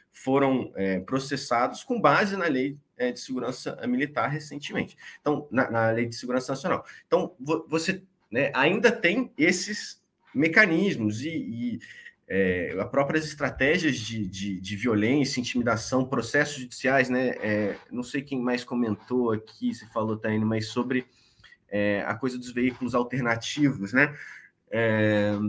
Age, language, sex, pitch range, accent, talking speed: 20-39, Portuguese, male, 110-150 Hz, Brazilian, 145 wpm